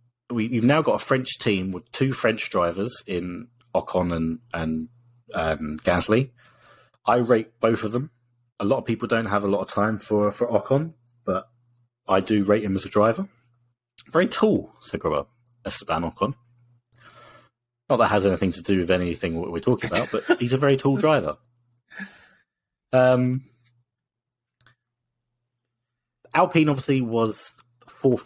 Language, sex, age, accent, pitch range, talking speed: English, male, 30-49, British, 100-120 Hz, 145 wpm